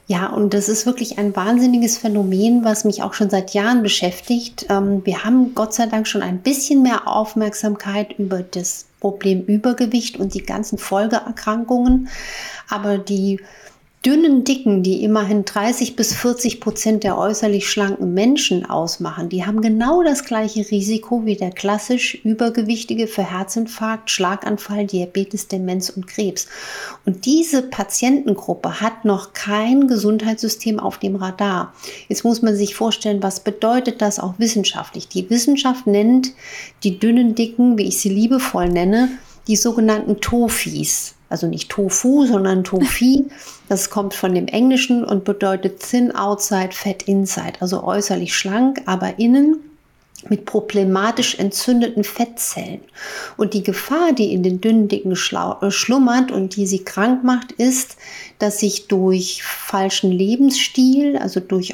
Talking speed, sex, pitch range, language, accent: 140 wpm, female, 195-240 Hz, English, German